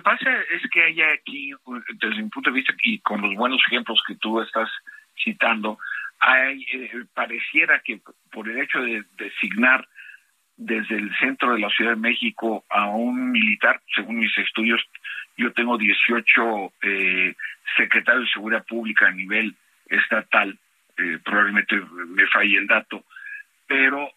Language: Spanish